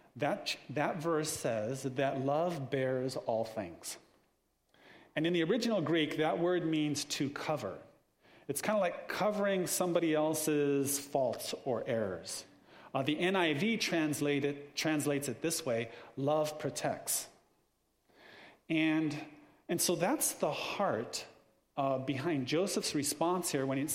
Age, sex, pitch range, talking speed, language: 40-59, male, 140-180 Hz, 130 wpm, English